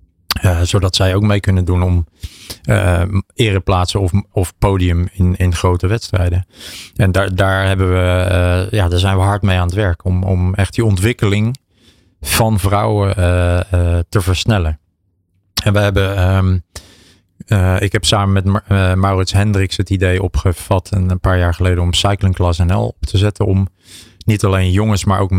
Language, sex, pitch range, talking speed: Dutch, male, 90-105 Hz, 180 wpm